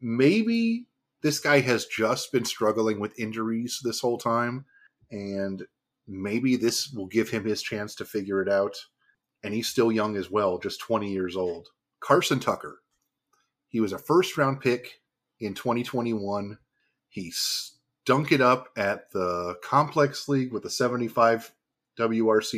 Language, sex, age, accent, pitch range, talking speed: English, male, 30-49, American, 110-135 Hz, 145 wpm